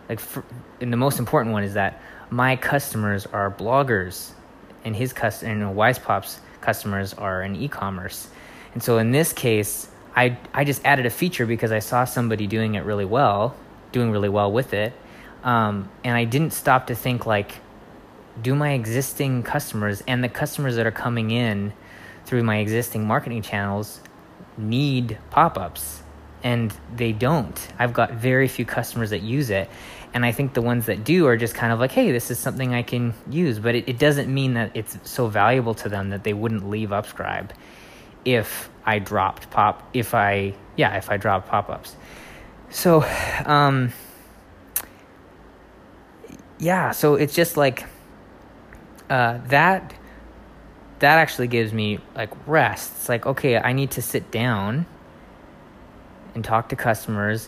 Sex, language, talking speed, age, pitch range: male, English, 160 wpm, 20-39, 105-130 Hz